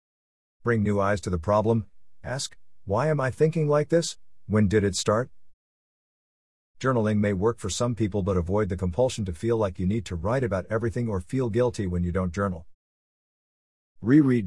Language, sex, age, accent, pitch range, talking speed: English, male, 50-69, American, 90-115 Hz, 180 wpm